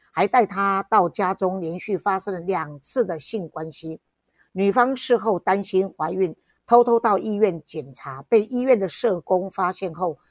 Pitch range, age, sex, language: 175-220 Hz, 50-69, female, Chinese